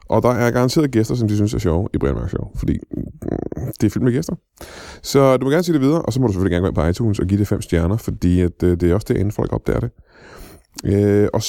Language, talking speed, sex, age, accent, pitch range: Danish, 270 wpm, male, 20-39, native, 100-135 Hz